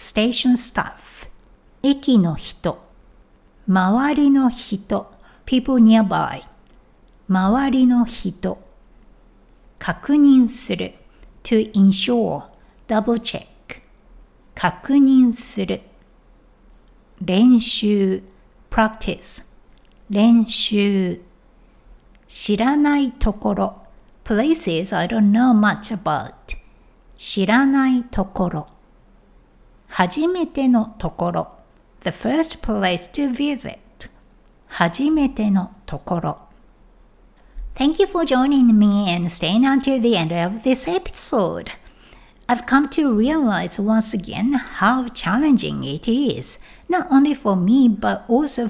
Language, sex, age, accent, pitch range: Japanese, female, 60-79, native, 195-265 Hz